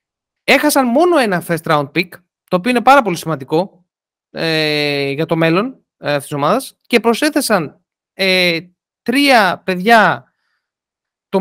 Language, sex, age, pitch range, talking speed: Greek, male, 20-39, 170-260 Hz, 135 wpm